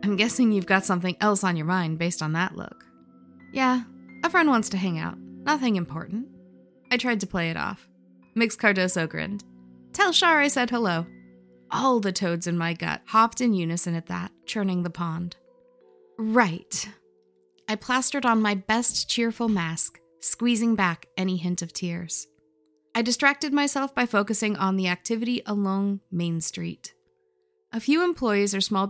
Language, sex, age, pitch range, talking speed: English, female, 20-39, 170-230 Hz, 165 wpm